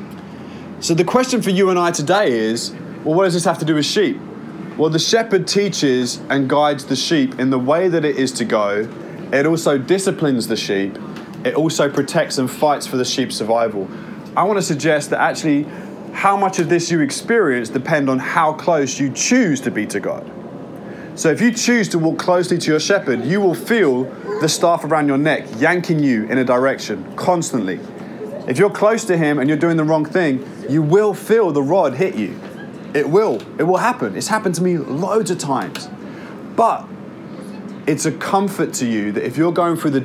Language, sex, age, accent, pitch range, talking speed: English, male, 30-49, British, 130-175 Hz, 200 wpm